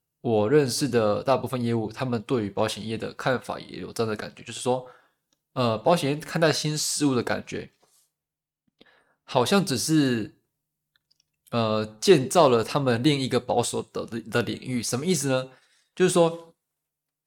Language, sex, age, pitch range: Chinese, male, 20-39, 115-150 Hz